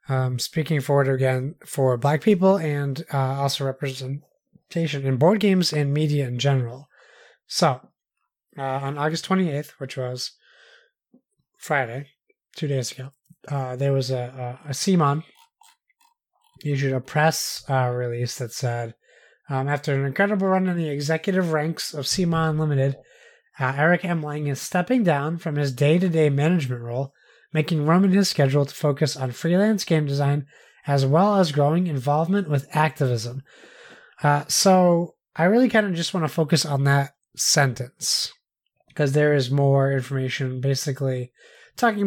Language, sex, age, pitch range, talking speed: English, male, 30-49, 135-170 Hz, 150 wpm